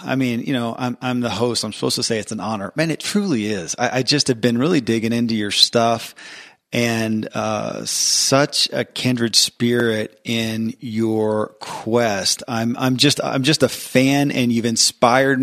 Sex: male